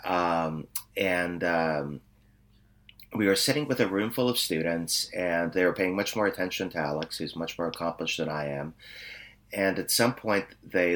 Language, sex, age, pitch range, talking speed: English, male, 30-49, 80-105 Hz, 180 wpm